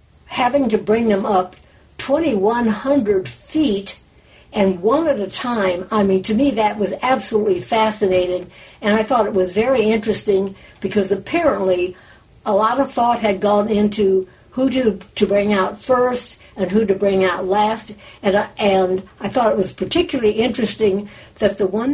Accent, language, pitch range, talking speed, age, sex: American, English, 195-230 Hz, 165 wpm, 60-79, female